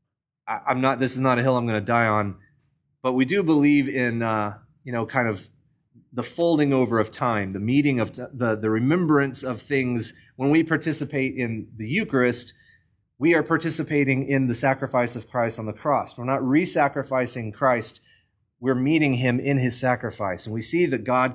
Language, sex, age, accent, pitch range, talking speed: English, male, 30-49, American, 105-135 Hz, 190 wpm